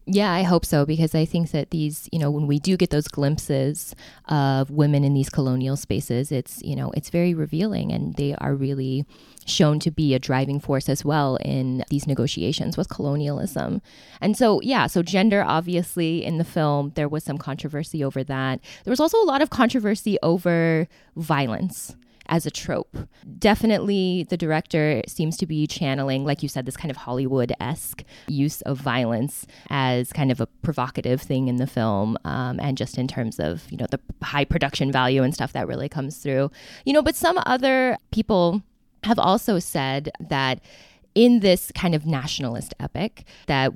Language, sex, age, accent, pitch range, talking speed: English, female, 20-39, American, 135-170 Hz, 185 wpm